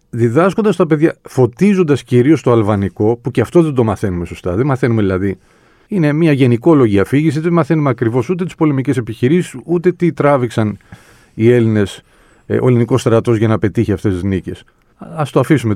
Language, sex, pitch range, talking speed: Greek, male, 115-165 Hz, 170 wpm